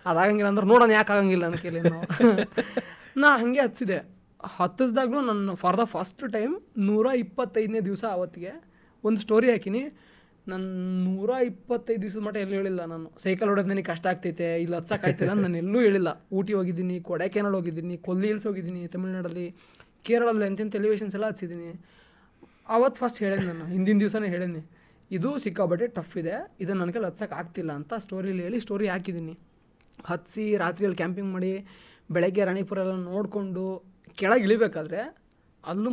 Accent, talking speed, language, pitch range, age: native, 145 wpm, Kannada, 175-215 Hz, 20-39